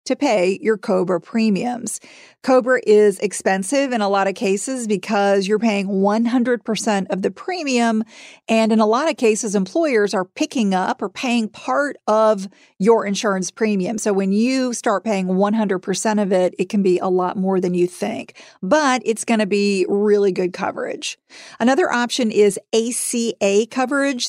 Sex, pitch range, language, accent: female, 200-240 Hz, English, American